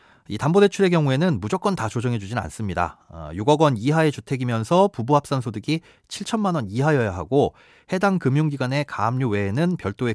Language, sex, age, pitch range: Korean, male, 30-49, 105-160 Hz